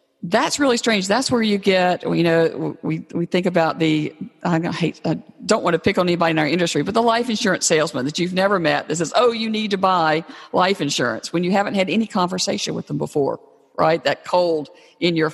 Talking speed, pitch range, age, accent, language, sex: 225 wpm, 160-210 Hz, 50-69, American, English, female